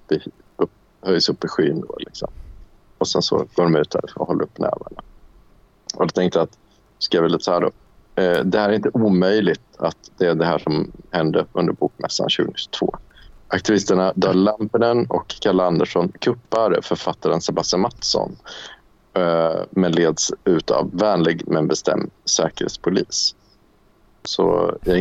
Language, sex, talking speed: Swedish, male, 155 wpm